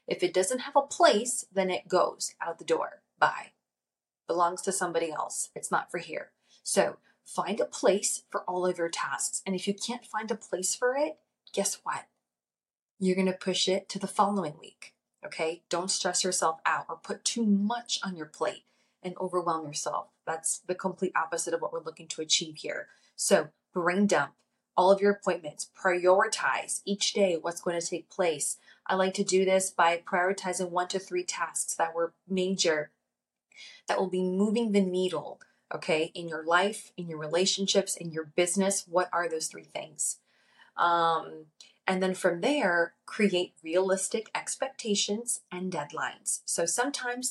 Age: 30-49